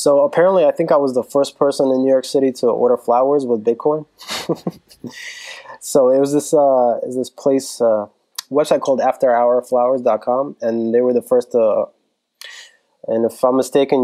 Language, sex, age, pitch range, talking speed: English, male, 20-39, 120-145 Hz, 185 wpm